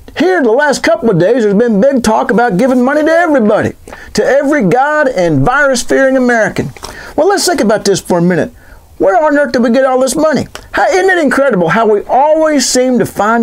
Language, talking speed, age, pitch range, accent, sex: English, 210 wpm, 50-69, 160-255 Hz, American, male